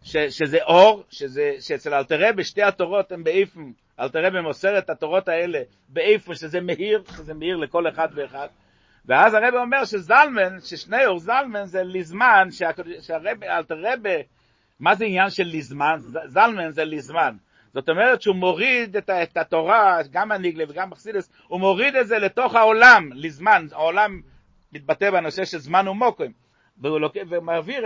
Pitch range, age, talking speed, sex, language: 165-215 Hz, 60-79, 145 wpm, male, Hebrew